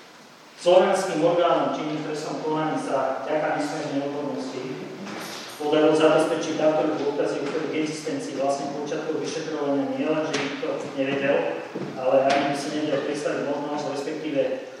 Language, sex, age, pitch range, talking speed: Slovak, male, 40-59, 135-160 Hz, 140 wpm